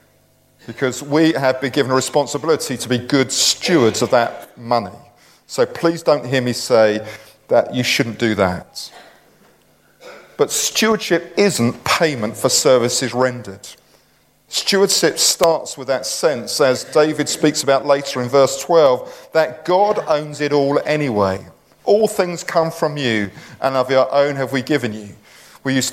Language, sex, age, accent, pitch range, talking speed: English, male, 40-59, British, 120-160 Hz, 155 wpm